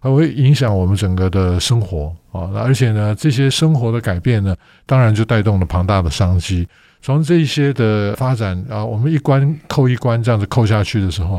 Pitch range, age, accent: 100-135 Hz, 50-69, American